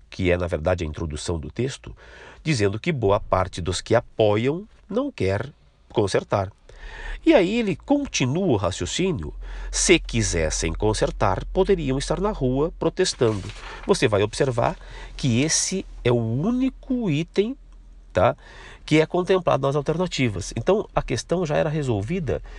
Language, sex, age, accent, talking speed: Portuguese, male, 50-69, Brazilian, 140 wpm